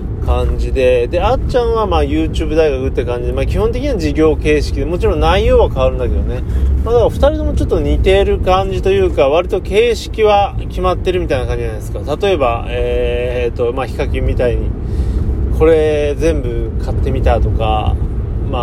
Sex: male